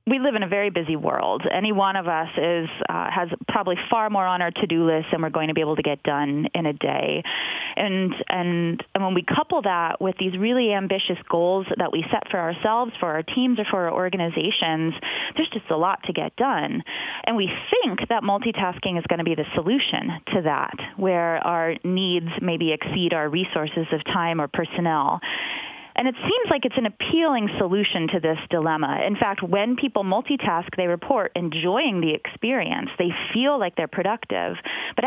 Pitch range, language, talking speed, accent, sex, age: 165-210 Hz, English, 195 wpm, American, female, 20-39